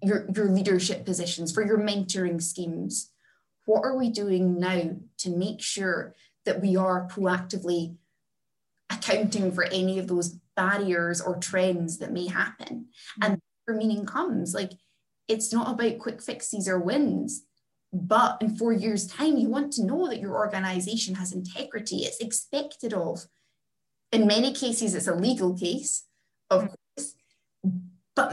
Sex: female